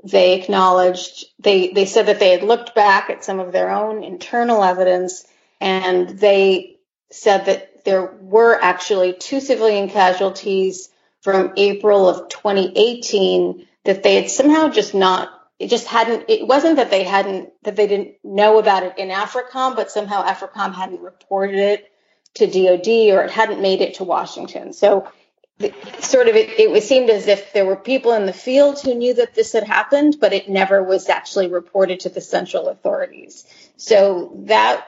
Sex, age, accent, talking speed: female, 30-49, American, 170 wpm